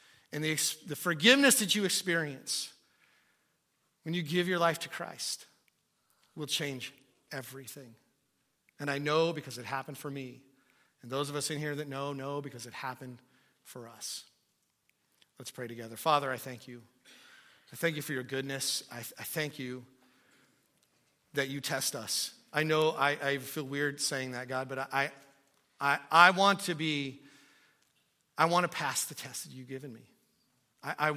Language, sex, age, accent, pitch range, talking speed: English, male, 40-59, American, 140-185 Hz, 170 wpm